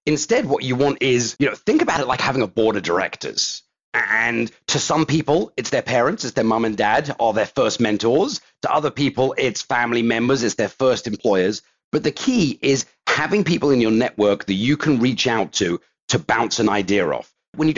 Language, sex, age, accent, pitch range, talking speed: English, male, 40-59, British, 105-140 Hz, 215 wpm